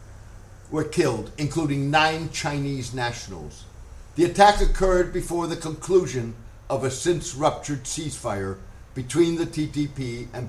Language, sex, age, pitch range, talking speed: English, male, 60-79, 120-155 Hz, 120 wpm